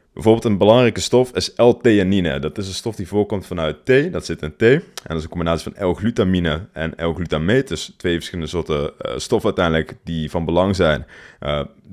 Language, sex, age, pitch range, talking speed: Dutch, male, 20-39, 85-110 Hz, 200 wpm